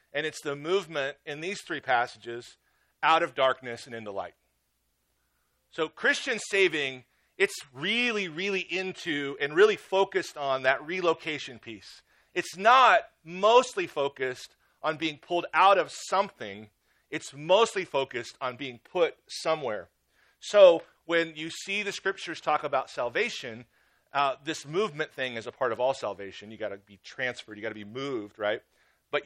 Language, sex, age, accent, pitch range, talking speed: English, male, 40-59, American, 120-175 Hz, 155 wpm